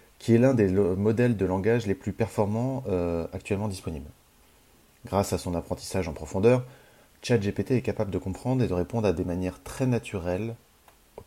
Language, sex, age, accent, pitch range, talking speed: French, male, 30-49, French, 90-115 Hz, 180 wpm